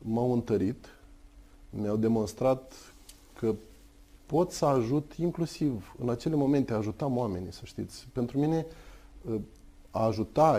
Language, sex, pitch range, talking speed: Romanian, male, 100-130 Hz, 115 wpm